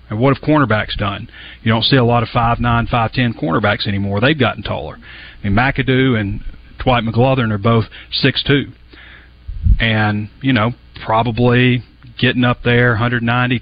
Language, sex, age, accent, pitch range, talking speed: English, male, 40-59, American, 110-130 Hz, 165 wpm